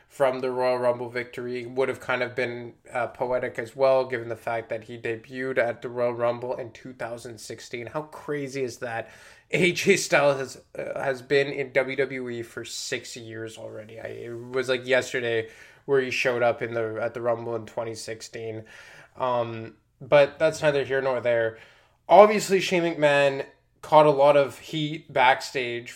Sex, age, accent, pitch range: male, 20-39, American, 115-140 Hz